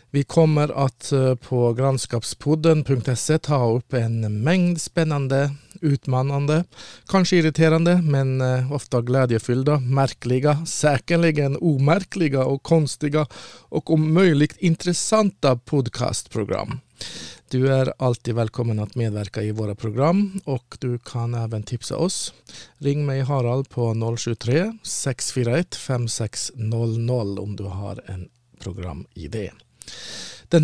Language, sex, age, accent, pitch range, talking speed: Swedish, male, 50-69, Norwegian, 120-155 Hz, 105 wpm